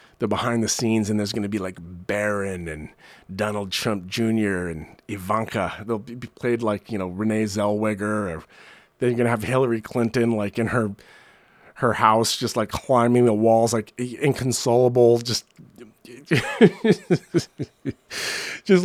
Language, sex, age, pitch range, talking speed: English, male, 30-49, 110-140 Hz, 145 wpm